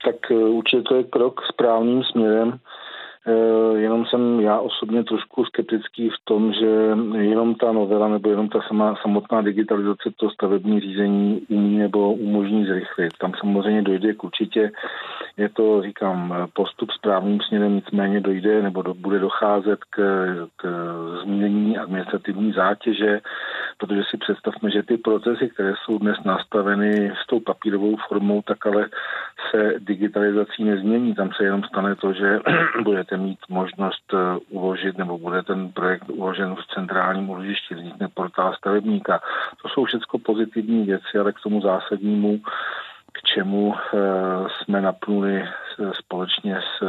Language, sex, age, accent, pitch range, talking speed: Czech, male, 40-59, native, 95-105 Hz, 135 wpm